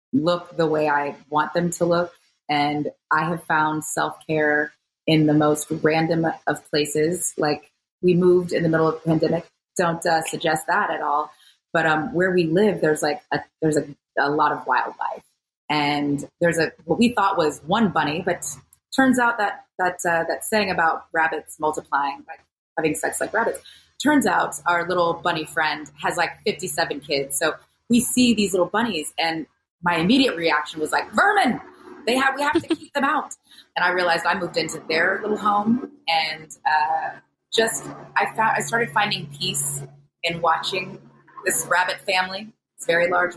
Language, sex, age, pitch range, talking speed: English, female, 20-39, 155-190 Hz, 180 wpm